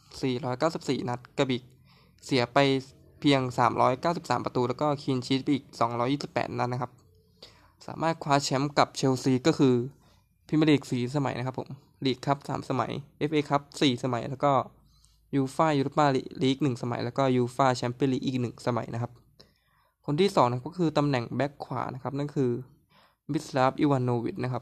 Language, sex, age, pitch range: Thai, male, 20-39, 125-145 Hz